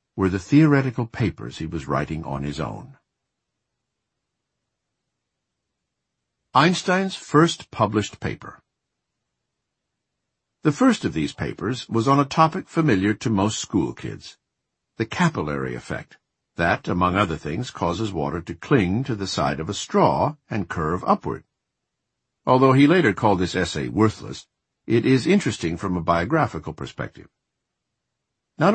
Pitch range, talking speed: 90-130 Hz, 130 wpm